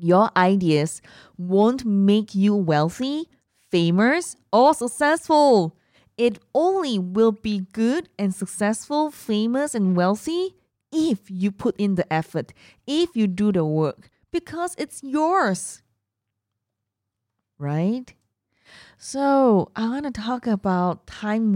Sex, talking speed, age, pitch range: female, 115 wpm, 20-39, 155-210 Hz